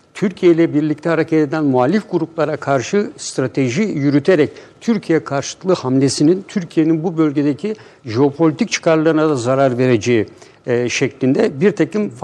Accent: native